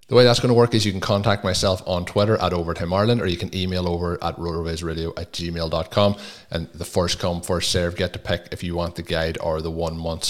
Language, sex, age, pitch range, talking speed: English, male, 20-39, 90-110 Hz, 245 wpm